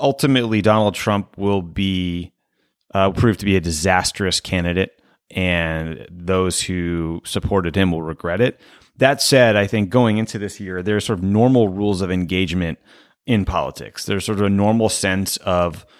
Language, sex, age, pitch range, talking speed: English, male, 30-49, 90-110 Hz, 165 wpm